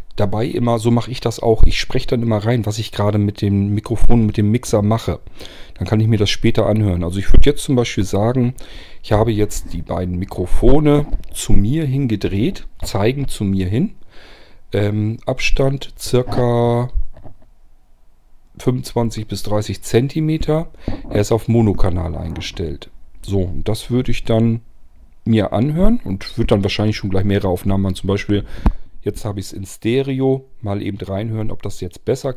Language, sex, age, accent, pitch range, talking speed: German, male, 40-59, German, 100-125 Hz, 170 wpm